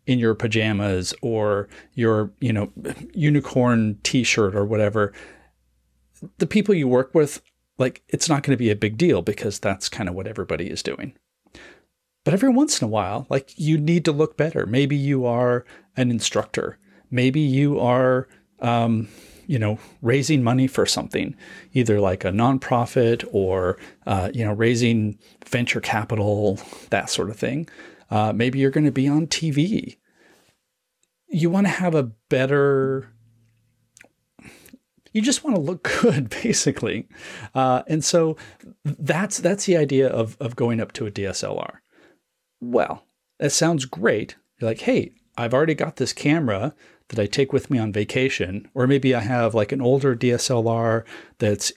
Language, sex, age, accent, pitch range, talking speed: English, male, 40-59, American, 110-145 Hz, 160 wpm